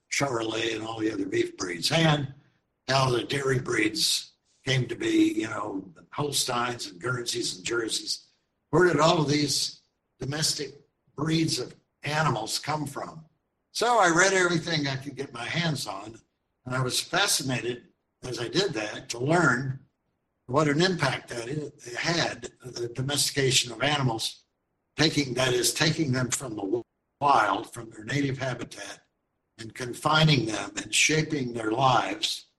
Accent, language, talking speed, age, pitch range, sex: American, English, 150 wpm, 60-79, 120-155 Hz, male